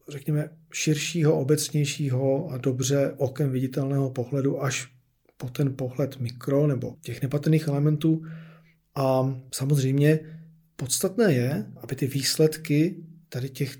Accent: native